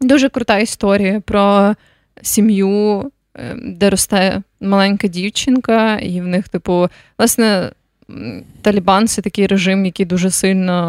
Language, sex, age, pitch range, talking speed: Ukrainian, female, 20-39, 180-210 Hz, 115 wpm